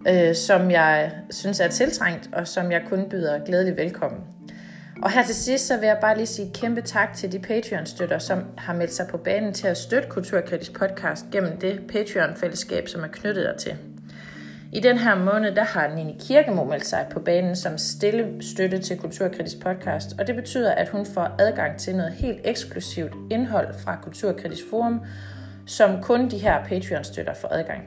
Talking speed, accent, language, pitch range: 195 wpm, native, Danish, 170-205 Hz